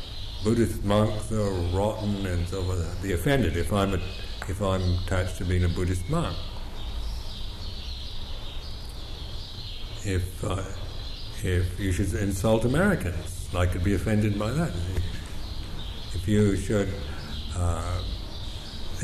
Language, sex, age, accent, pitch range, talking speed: English, male, 60-79, American, 90-110 Hz, 115 wpm